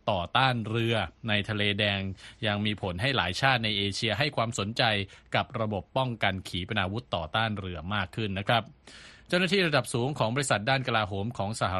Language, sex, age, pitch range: Thai, male, 20-39, 100-125 Hz